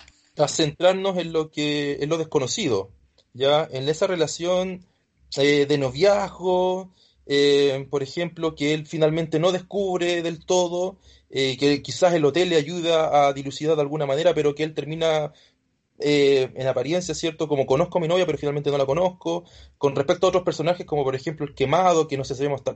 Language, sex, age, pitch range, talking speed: Spanish, male, 20-39, 140-175 Hz, 180 wpm